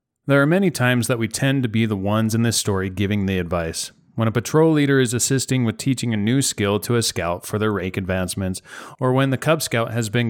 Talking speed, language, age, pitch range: 245 wpm, English, 30-49, 100-130 Hz